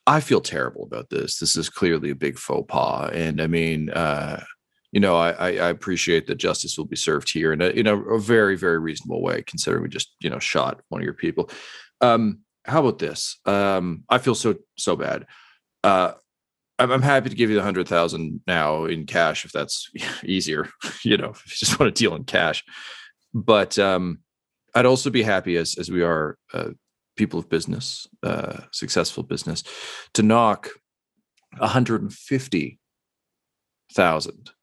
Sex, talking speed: male, 180 wpm